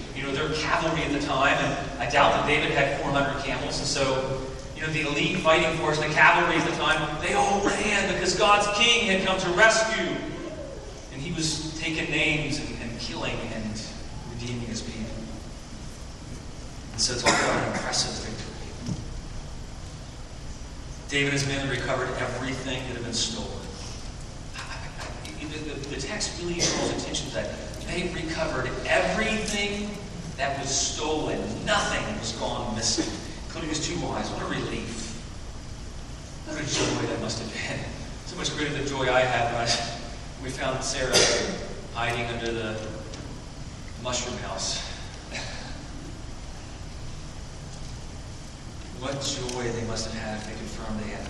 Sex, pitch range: male, 115-165 Hz